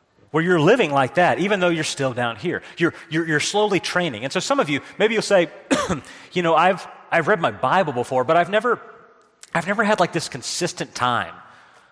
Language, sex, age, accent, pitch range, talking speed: English, male, 30-49, American, 135-180 Hz, 210 wpm